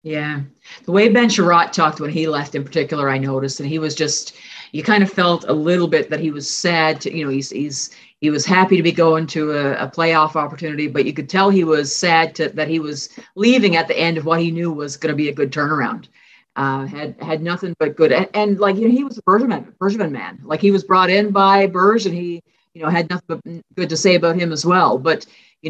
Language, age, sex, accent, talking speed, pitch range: English, 50-69, female, American, 255 wpm, 145-175 Hz